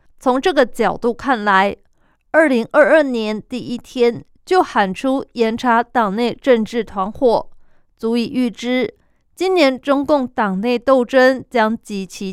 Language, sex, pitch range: Chinese, female, 210-255 Hz